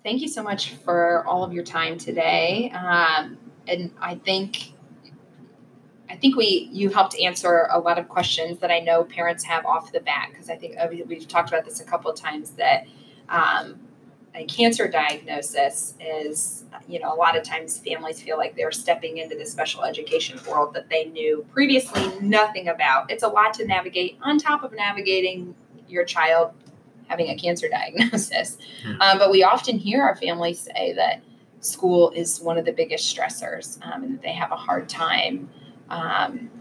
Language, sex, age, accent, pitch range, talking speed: English, female, 20-39, American, 165-230 Hz, 180 wpm